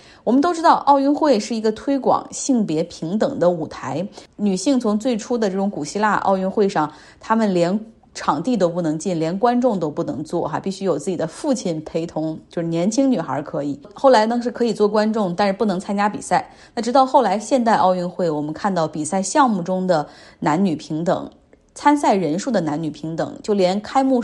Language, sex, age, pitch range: Chinese, female, 20-39, 170-235 Hz